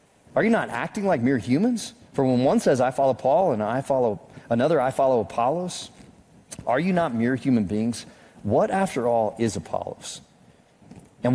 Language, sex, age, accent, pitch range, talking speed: English, male, 30-49, American, 115-150 Hz, 175 wpm